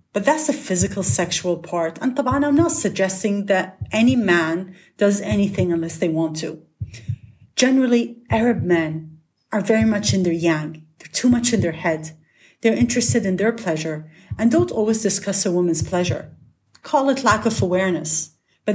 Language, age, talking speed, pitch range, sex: English, 40-59, 165 wpm, 170-225 Hz, female